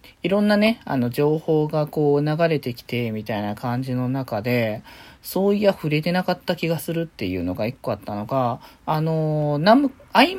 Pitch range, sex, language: 140-205 Hz, male, Japanese